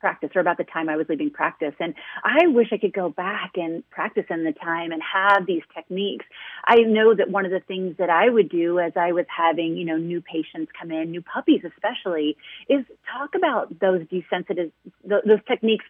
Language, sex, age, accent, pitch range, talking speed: English, female, 30-49, American, 185-260 Hz, 215 wpm